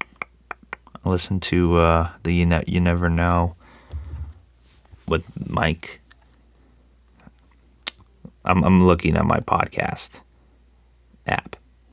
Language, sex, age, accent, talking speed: English, male, 30-49, American, 90 wpm